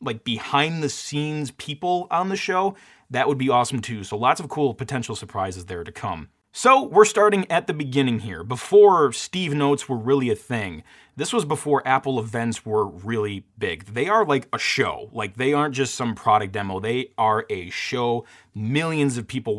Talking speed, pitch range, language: 195 wpm, 105-145 Hz, English